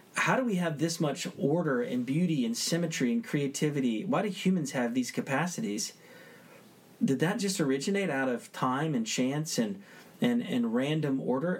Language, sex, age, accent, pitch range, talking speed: English, male, 40-59, American, 130-200 Hz, 170 wpm